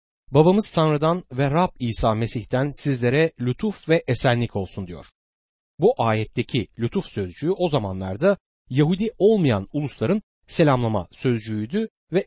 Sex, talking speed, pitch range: male, 115 wpm, 110-175 Hz